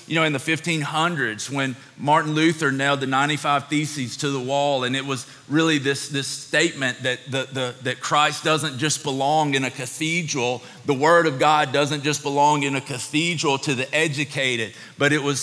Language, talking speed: English, 190 wpm